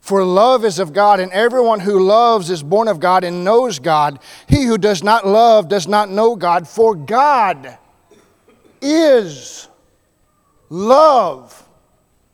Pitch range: 190-275 Hz